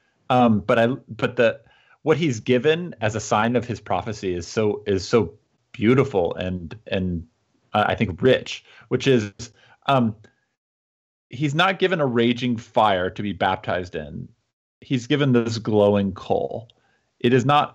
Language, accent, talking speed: English, American, 155 wpm